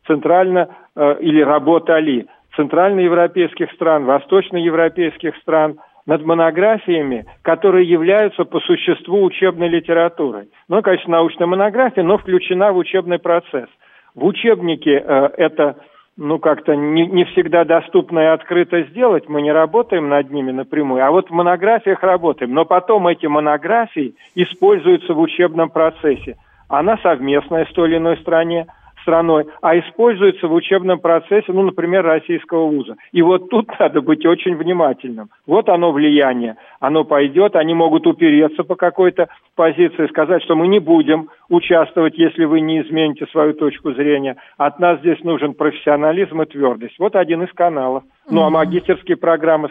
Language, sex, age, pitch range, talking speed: Russian, male, 50-69, 150-180 Hz, 145 wpm